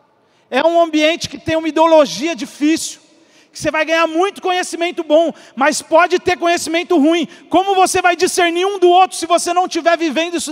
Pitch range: 260-340 Hz